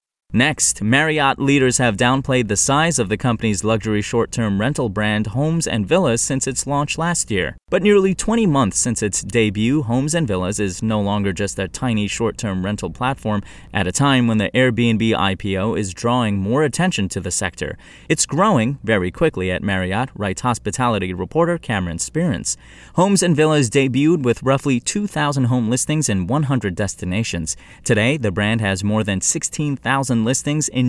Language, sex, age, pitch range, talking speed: English, male, 30-49, 100-135 Hz, 165 wpm